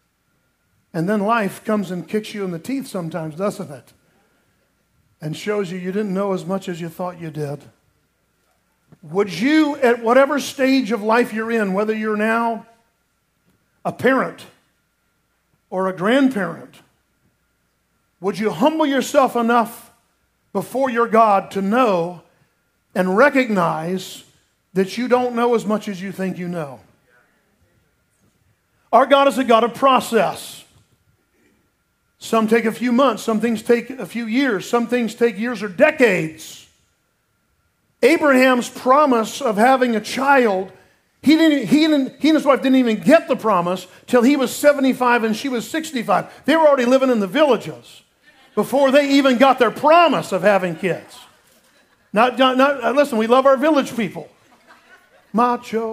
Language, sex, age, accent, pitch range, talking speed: English, male, 50-69, American, 195-260 Hz, 150 wpm